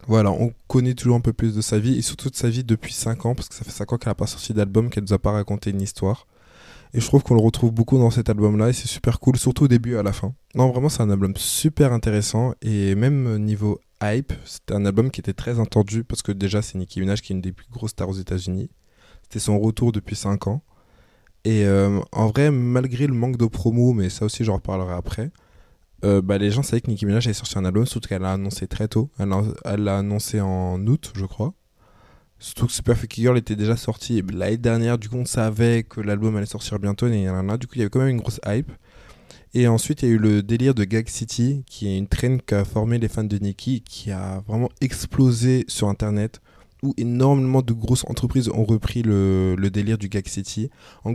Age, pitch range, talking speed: 20-39, 100-120 Hz, 250 wpm